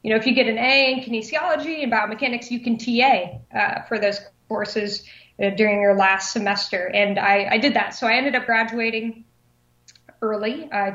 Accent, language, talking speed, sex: American, English, 190 wpm, female